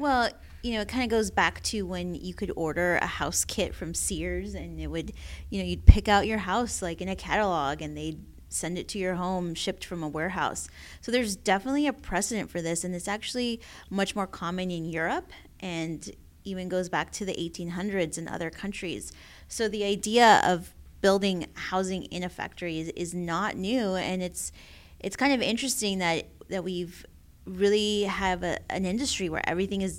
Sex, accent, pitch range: female, American, 165-195 Hz